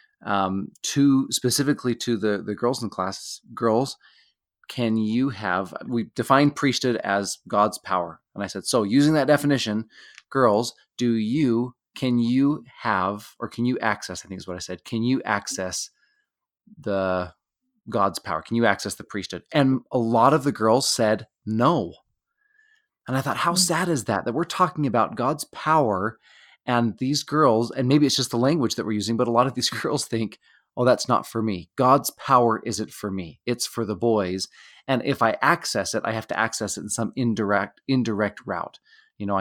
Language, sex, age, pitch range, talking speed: English, male, 20-39, 100-135 Hz, 190 wpm